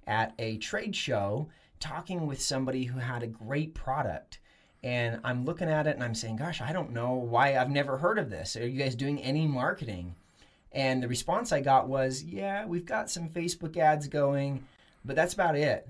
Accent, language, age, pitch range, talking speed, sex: American, English, 30-49, 115-145 Hz, 200 wpm, male